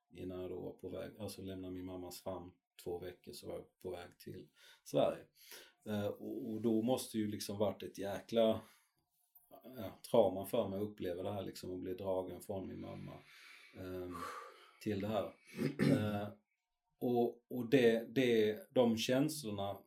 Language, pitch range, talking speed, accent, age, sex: Swedish, 100-115 Hz, 170 wpm, native, 30-49, male